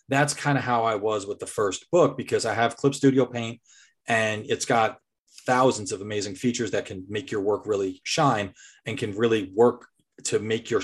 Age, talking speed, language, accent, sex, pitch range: 30-49, 205 wpm, English, American, male, 110-135 Hz